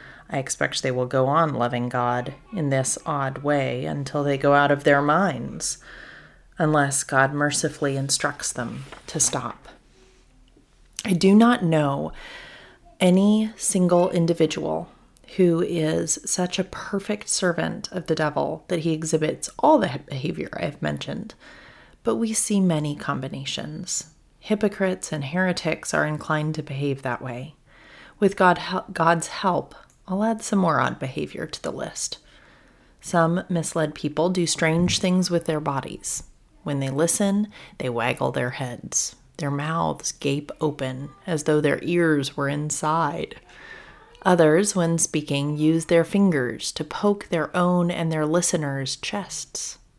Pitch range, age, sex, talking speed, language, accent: 145-185 Hz, 30-49, female, 140 wpm, English, American